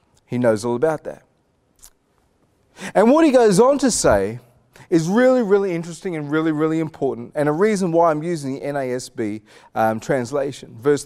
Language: English